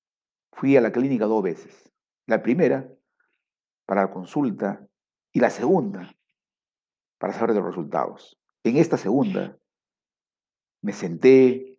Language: Spanish